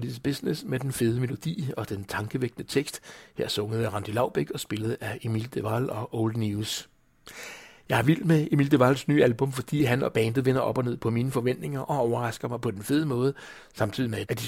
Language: English